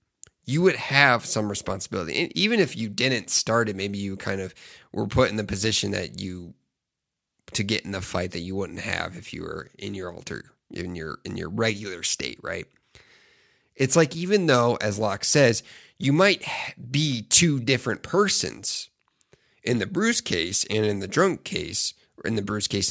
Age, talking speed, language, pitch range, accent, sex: 30-49, 190 wpm, English, 100-135 Hz, American, male